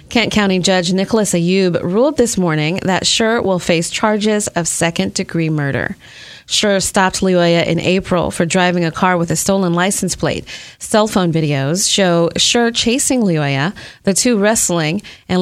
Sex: female